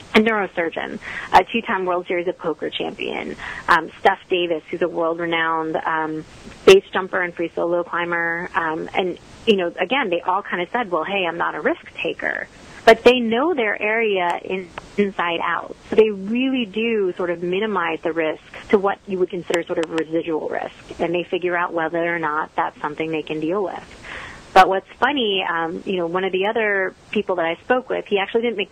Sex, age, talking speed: female, 30-49, 200 wpm